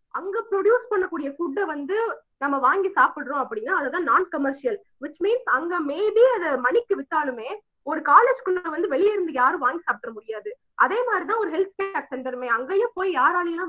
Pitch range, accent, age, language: 270-405 Hz, native, 20-39, Tamil